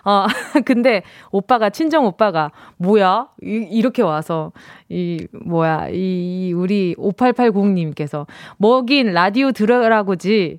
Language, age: Korean, 20-39